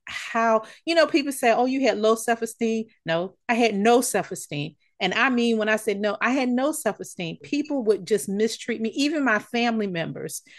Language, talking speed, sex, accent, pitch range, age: English, 200 wpm, female, American, 185-230 Hz, 40-59